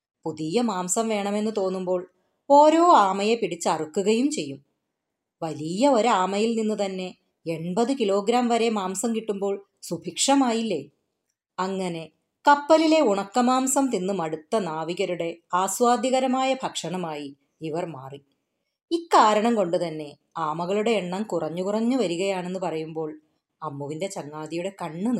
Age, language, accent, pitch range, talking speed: 30-49, Malayalam, native, 180-240 Hz, 95 wpm